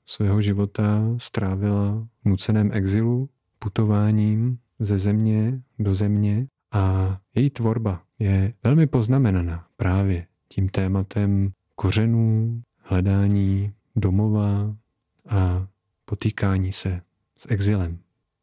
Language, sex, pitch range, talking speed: Czech, male, 95-110 Hz, 90 wpm